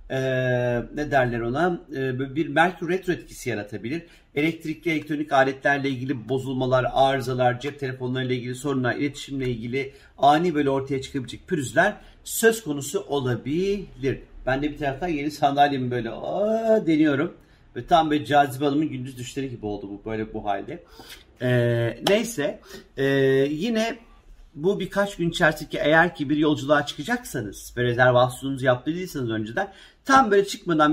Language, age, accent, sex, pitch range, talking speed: Turkish, 50-69, native, male, 125-165 Hz, 140 wpm